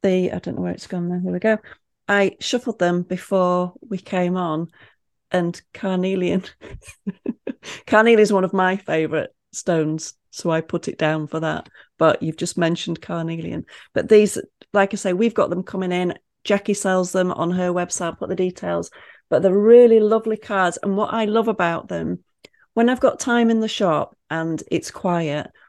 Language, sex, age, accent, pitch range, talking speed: English, female, 30-49, British, 170-205 Hz, 180 wpm